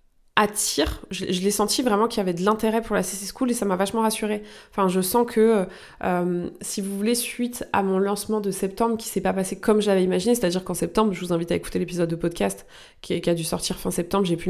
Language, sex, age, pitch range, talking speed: French, female, 20-39, 180-210 Hz, 255 wpm